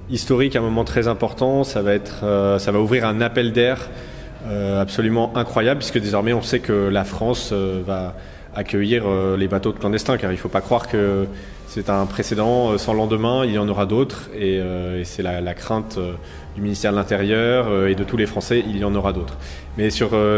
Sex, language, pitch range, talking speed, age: male, French, 95-115 Hz, 225 wpm, 30-49